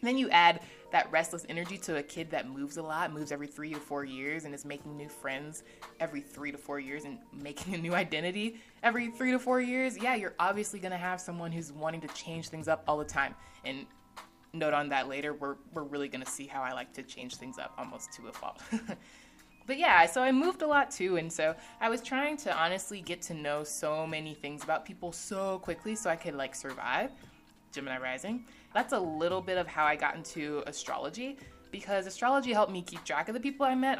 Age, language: 20-39, English